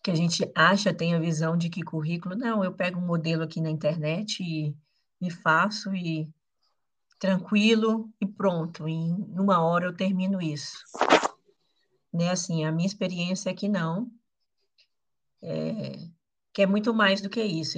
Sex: female